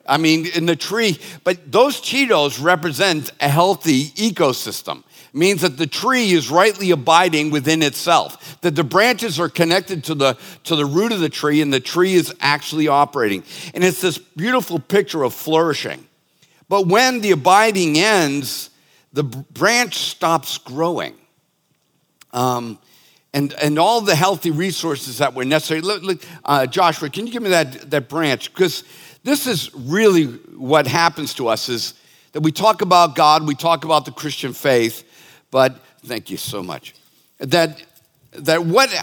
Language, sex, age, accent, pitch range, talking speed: English, male, 50-69, American, 150-185 Hz, 165 wpm